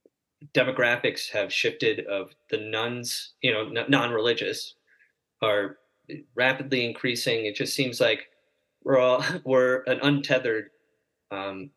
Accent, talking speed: American, 110 wpm